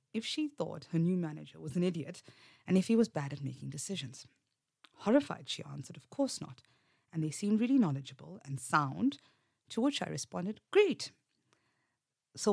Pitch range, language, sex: 145-200 Hz, English, female